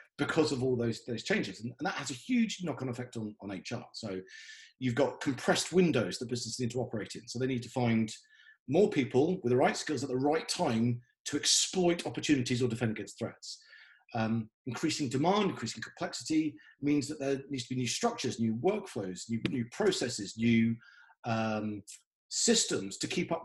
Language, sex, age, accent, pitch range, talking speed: English, male, 40-59, British, 120-155 Hz, 190 wpm